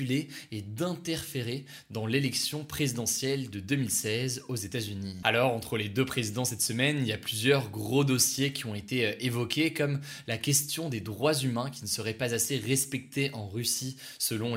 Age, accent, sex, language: 20-39, French, male, French